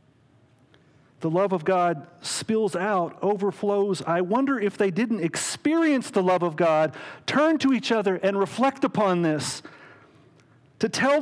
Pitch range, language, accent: 135-195 Hz, English, American